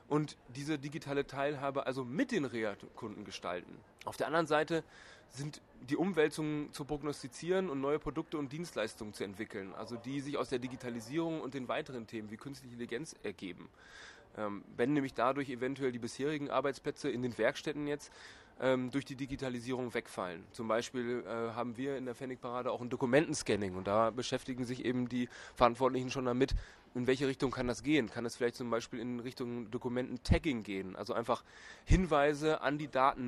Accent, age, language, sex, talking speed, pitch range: German, 20-39, German, male, 175 wpm, 120-145 Hz